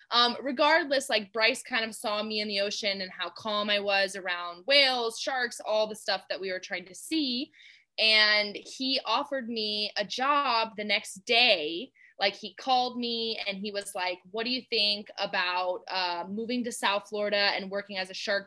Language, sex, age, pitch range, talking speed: English, female, 20-39, 190-230 Hz, 195 wpm